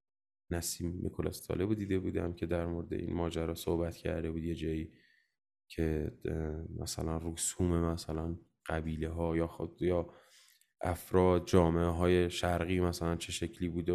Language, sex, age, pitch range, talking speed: Persian, male, 20-39, 85-100 Hz, 130 wpm